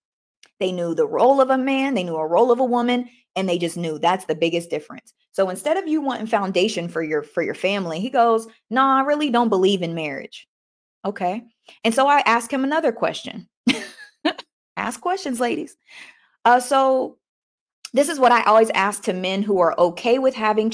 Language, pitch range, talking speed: English, 185-260 Hz, 195 wpm